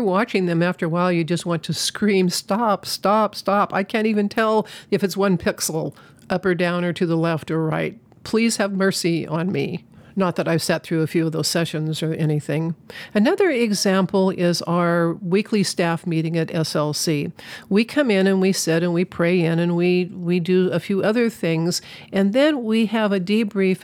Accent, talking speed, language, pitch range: American, 200 wpm, English, 170-210 Hz